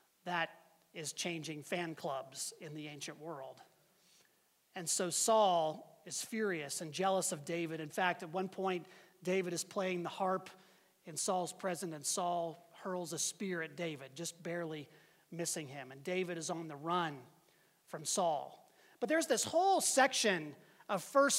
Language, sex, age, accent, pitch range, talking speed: English, male, 30-49, American, 170-220 Hz, 160 wpm